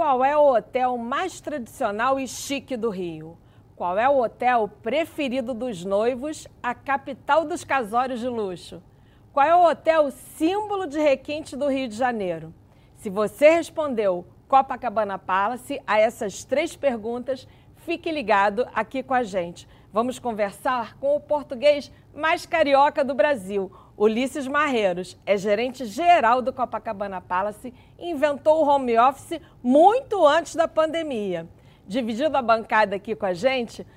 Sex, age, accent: female, 40-59, Brazilian